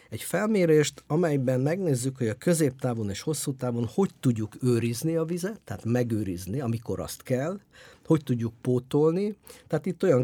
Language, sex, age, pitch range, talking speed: English, male, 50-69, 100-140 Hz, 150 wpm